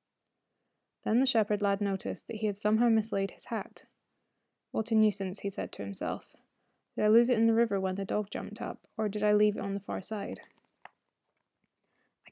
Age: 20-39